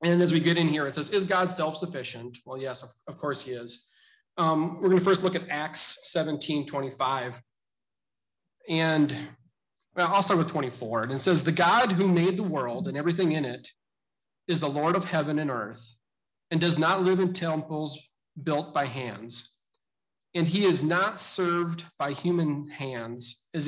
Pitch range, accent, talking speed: 135-170 Hz, American, 175 wpm